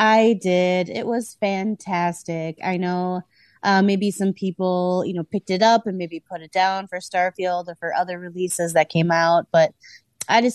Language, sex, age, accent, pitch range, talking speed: English, female, 30-49, American, 160-195 Hz, 190 wpm